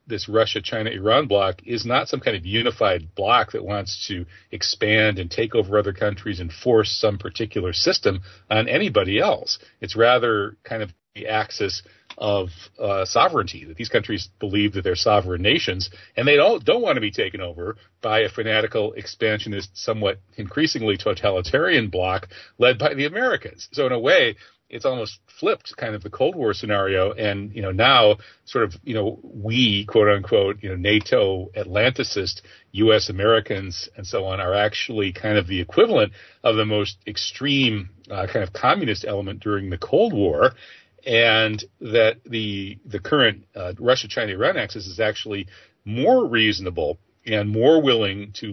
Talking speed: 165 wpm